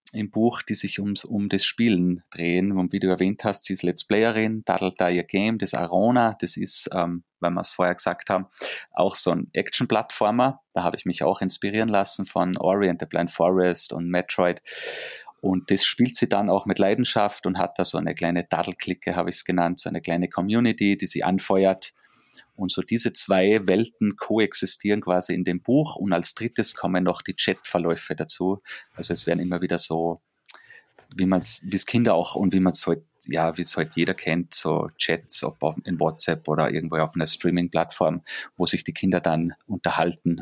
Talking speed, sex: 195 wpm, male